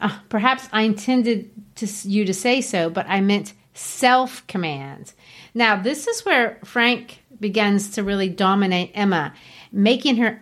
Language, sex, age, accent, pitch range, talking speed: English, female, 40-59, American, 205-255 Hz, 140 wpm